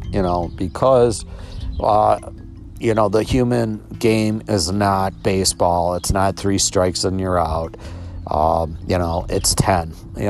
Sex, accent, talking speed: male, American, 145 wpm